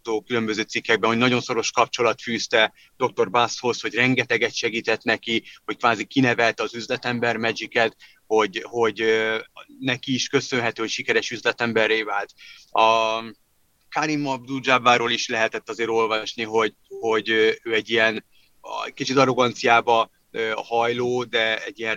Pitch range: 110-140 Hz